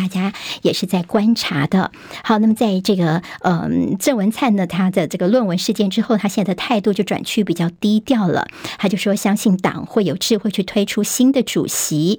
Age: 50-69